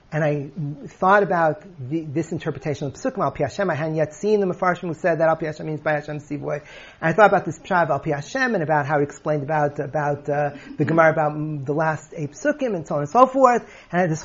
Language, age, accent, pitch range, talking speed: English, 40-59, American, 150-220 Hz, 250 wpm